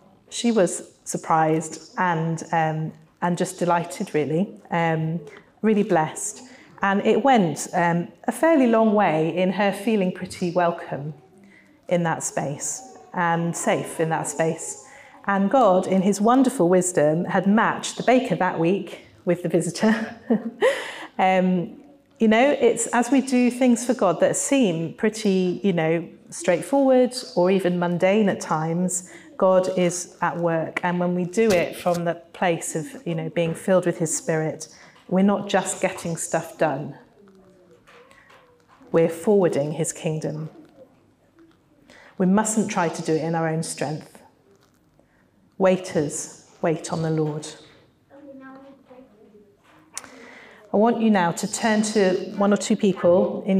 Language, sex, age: English, female, 30-49